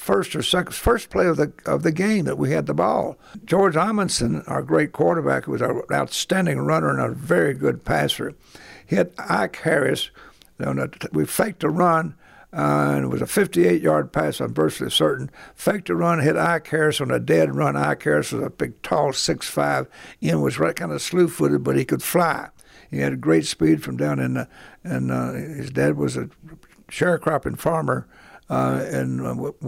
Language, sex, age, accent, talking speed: English, male, 60-79, American, 195 wpm